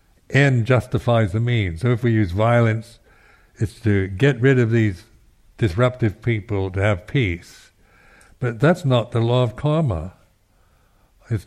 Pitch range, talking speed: 95-115 Hz, 145 wpm